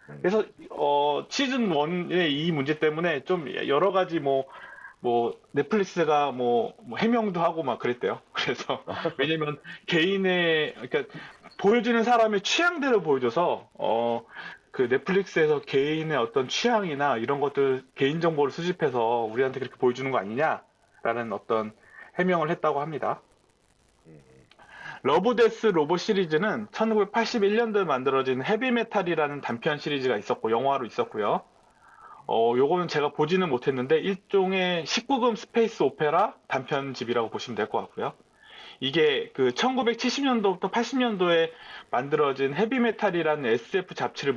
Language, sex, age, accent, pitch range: Korean, male, 30-49, native, 140-220 Hz